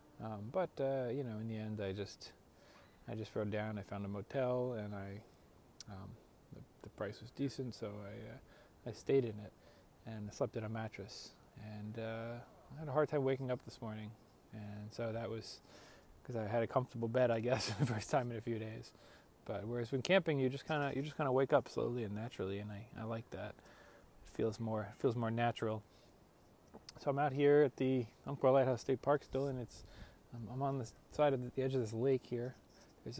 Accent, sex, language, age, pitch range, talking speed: American, male, English, 20-39, 110-135 Hz, 225 wpm